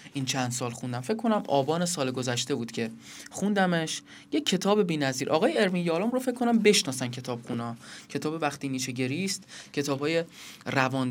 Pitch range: 135-190 Hz